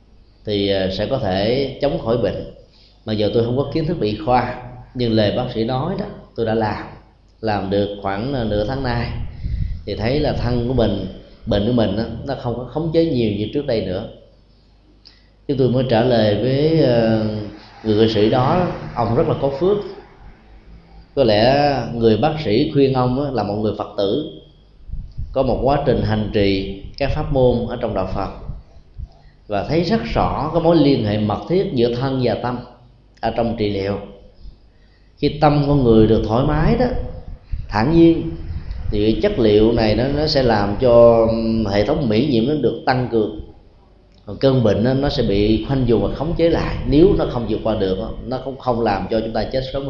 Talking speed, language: 195 wpm, Vietnamese